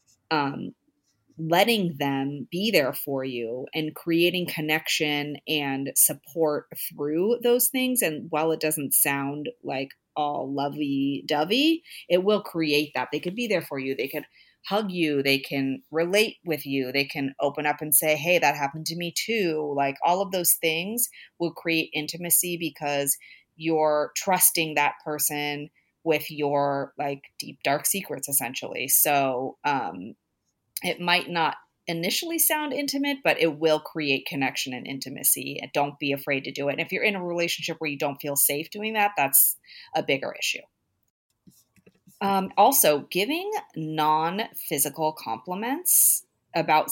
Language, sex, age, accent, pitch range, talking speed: English, female, 30-49, American, 140-175 Hz, 150 wpm